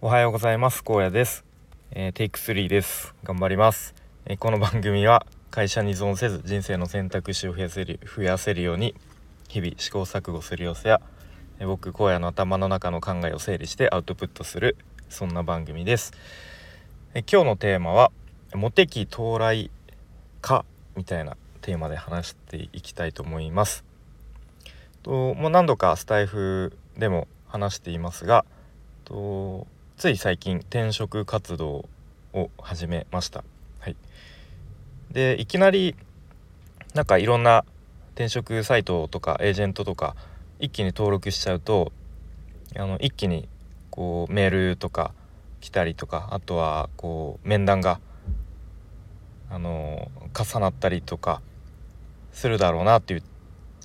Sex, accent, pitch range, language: male, native, 85-105 Hz, Japanese